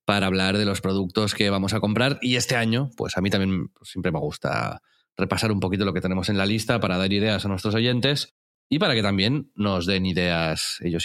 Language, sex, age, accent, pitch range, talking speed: Spanish, male, 30-49, Spanish, 90-115 Hz, 230 wpm